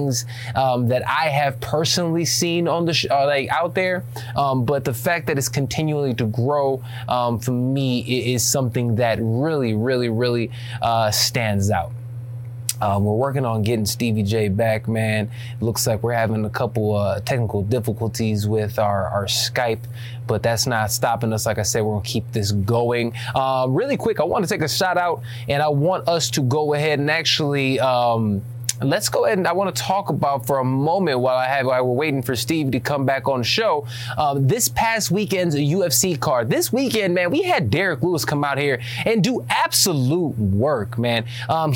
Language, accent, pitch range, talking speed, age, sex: English, American, 120-155 Hz, 200 wpm, 20-39, male